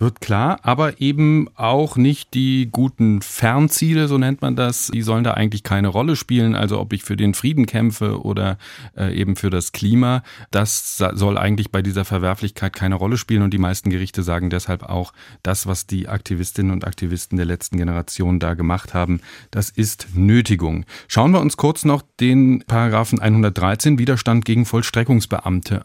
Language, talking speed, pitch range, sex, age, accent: German, 170 wpm, 100-125 Hz, male, 40-59, German